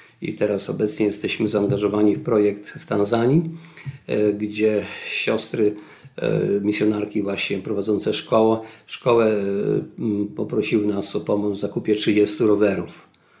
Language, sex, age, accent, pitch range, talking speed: Polish, male, 50-69, native, 105-125 Hz, 105 wpm